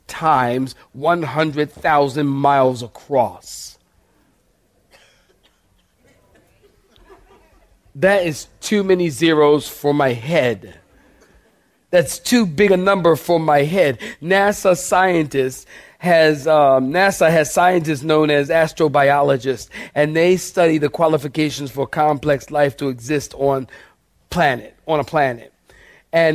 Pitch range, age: 140-180 Hz, 40-59